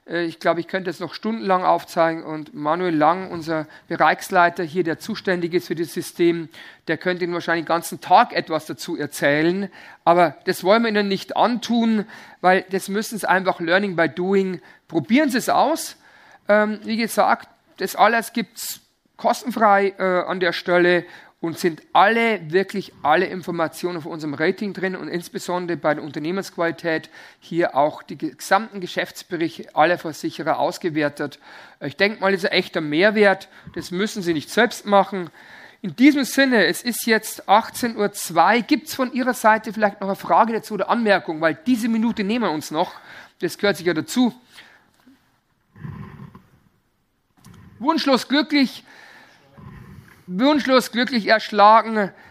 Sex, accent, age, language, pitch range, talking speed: male, German, 50-69, German, 170-220 Hz, 155 wpm